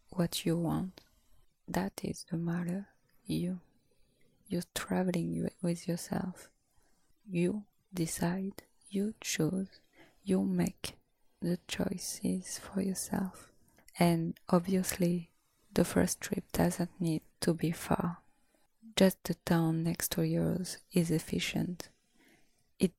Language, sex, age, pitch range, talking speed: English, female, 20-39, 165-185 Hz, 105 wpm